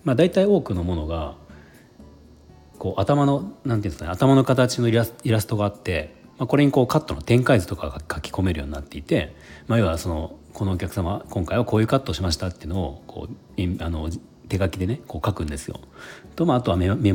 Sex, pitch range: male, 75-115 Hz